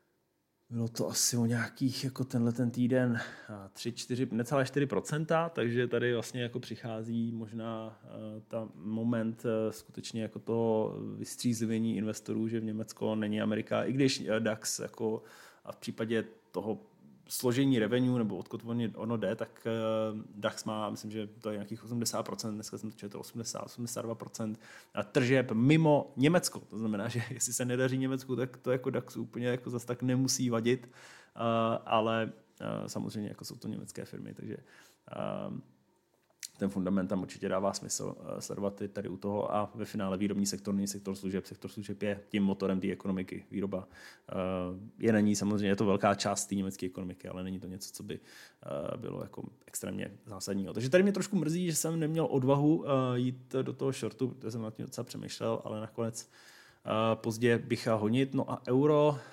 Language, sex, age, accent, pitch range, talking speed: Czech, male, 20-39, native, 105-125 Hz, 165 wpm